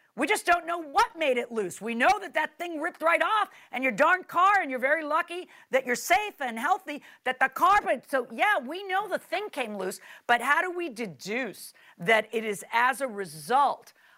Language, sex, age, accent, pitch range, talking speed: English, female, 50-69, American, 195-275 Hz, 215 wpm